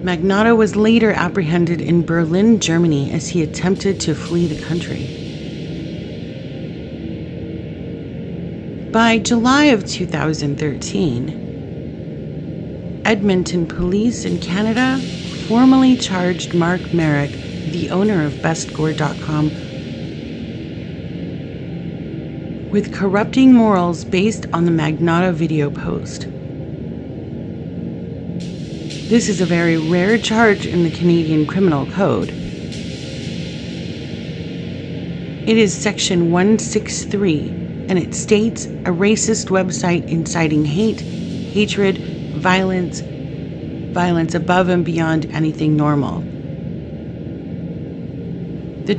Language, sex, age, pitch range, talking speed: English, female, 40-59, 155-200 Hz, 85 wpm